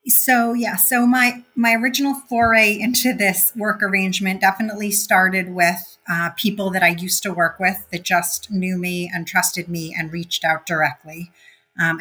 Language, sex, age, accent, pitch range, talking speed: English, female, 30-49, American, 165-190 Hz, 170 wpm